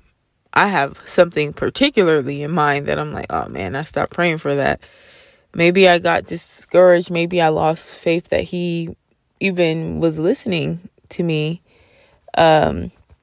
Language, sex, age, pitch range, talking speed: English, female, 20-39, 160-185 Hz, 145 wpm